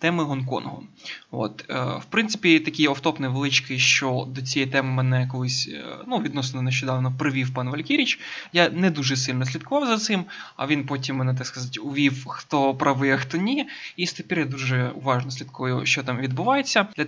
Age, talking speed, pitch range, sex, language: 20-39, 180 wpm, 135-165 Hz, male, Ukrainian